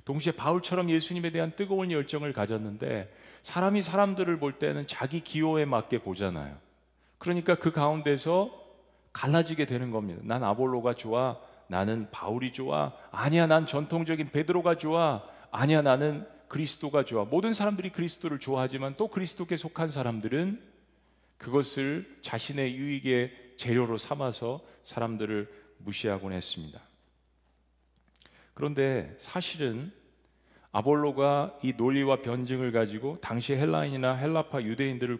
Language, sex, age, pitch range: Korean, male, 40-59, 115-160 Hz